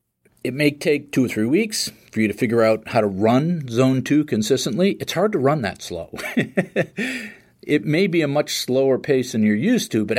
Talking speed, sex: 210 wpm, male